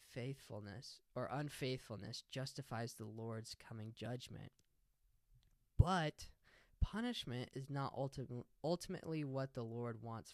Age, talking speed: 10-29, 105 wpm